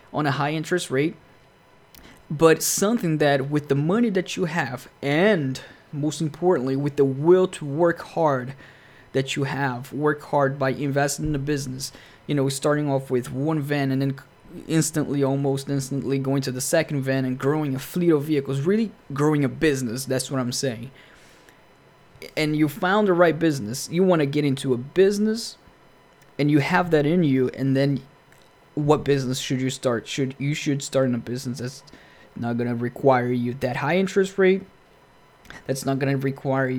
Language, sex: English, male